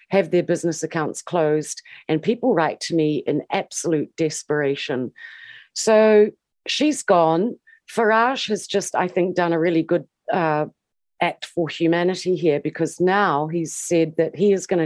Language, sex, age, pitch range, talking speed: English, female, 40-59, 155-210 Hz, 155 wpm